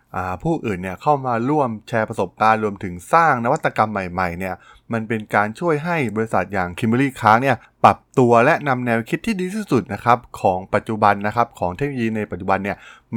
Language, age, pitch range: Thai, 20-39, 100-135 Hz